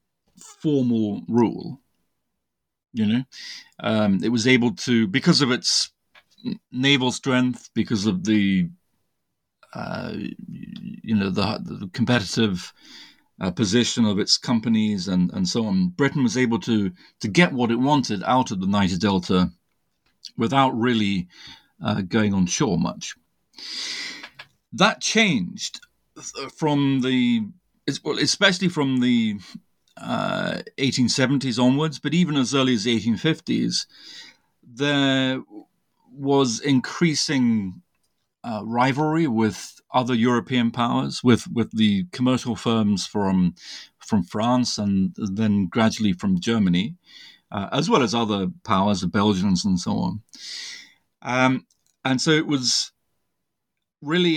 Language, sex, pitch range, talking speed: English, male, 110-145 Hz, 120 wpm